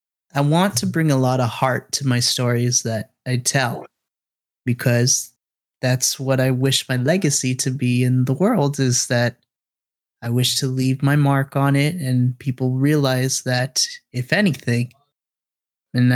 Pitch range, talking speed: 125-145 Hz, 160 wpm